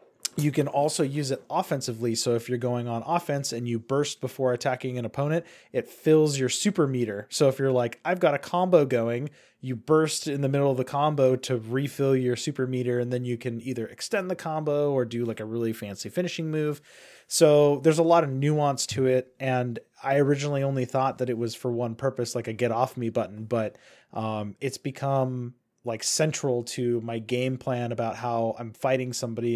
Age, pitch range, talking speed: 20-39, 120-145 Hz, 205 wpm